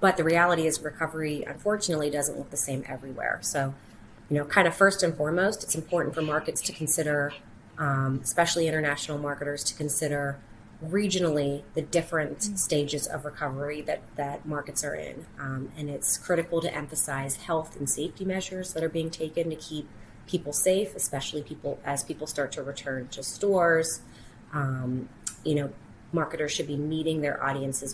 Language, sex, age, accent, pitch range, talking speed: English, female, 30-49, American, 145-170 Hz, 170 wpm